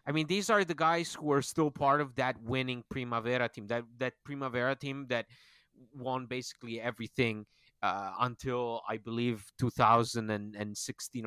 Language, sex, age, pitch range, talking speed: English, male, 30-49, 115-145 Hz, 150 wpm